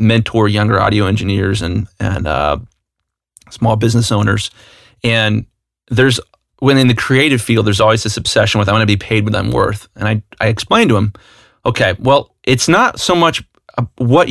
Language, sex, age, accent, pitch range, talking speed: English, male, 30-49, American, 105-125 Hz, 180 wpm